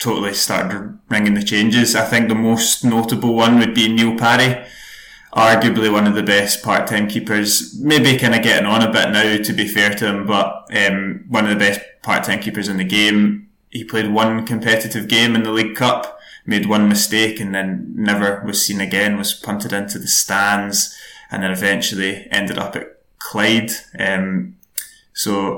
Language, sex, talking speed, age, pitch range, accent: English, male, 185 wpm, 20-39, 100-115 Hz, British